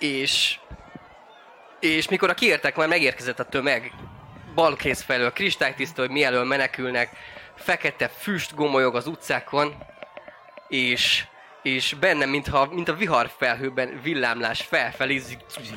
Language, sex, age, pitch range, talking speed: Hungarian, male, 20-39, 130-155 Hz, 115 wpm